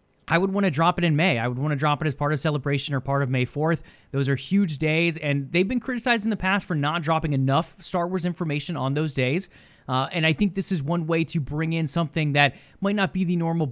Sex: male